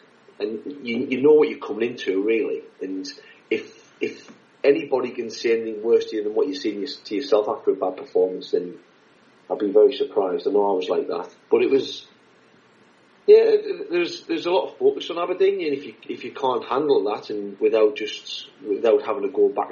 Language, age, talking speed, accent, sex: English, 30-49, 210 wpm, British, male